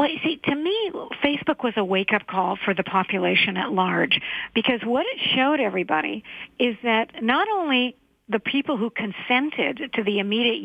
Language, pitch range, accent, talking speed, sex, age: English, 215-280 Hz, American, 175 wpm, female, 50-69